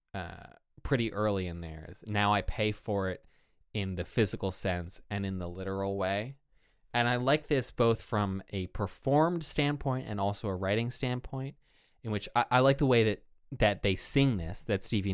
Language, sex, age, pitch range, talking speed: English, male, 20-39, 95-120 Hz, 185 wpm